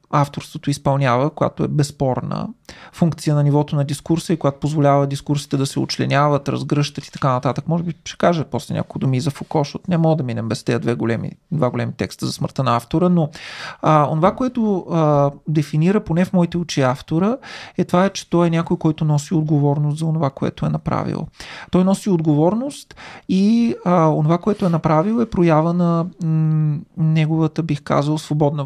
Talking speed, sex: 180 wpm, male